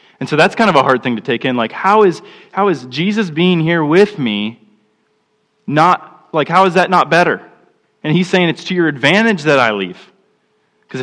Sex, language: male, English